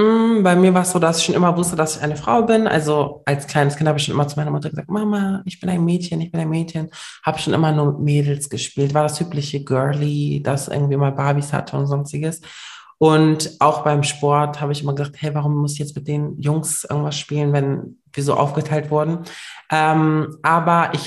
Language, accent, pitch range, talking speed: German, German, 145-165 Hz, 230 wpm